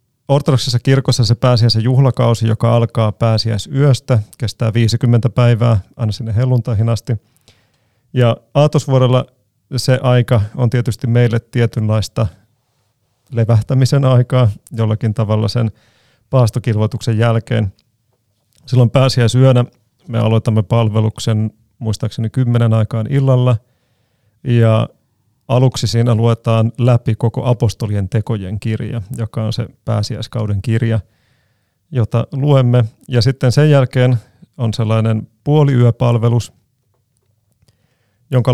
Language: Finnish